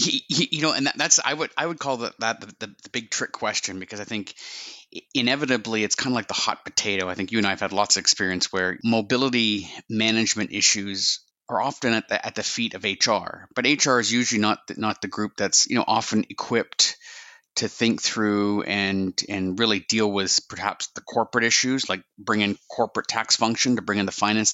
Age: 30-49